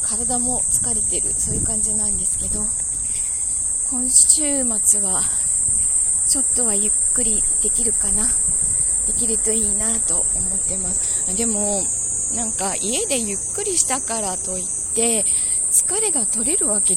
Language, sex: Japanese, female